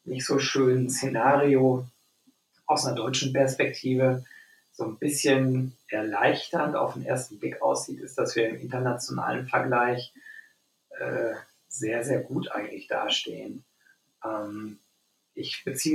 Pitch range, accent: 120-140 Hz, German